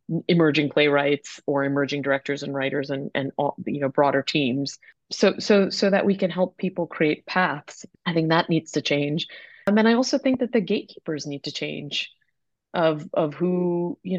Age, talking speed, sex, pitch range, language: 30-49, 195 wpm, female, 150-180 Hz, English